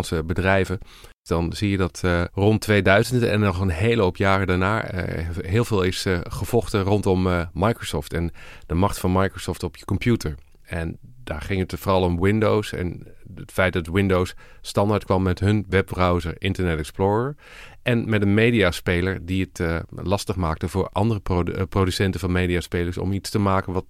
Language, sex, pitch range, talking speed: Dutch, male, 90-110 Hz, 175 wpm